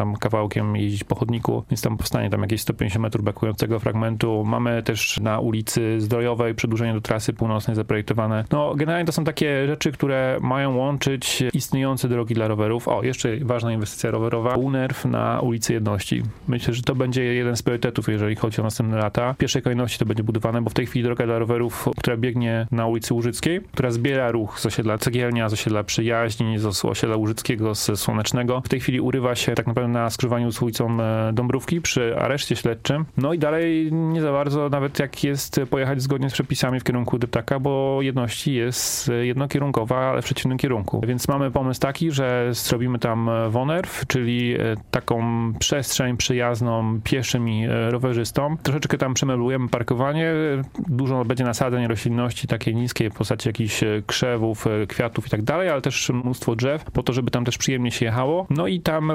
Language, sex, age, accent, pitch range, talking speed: Polish, male, 30-49, native, 115-135 Hz, 180 wpm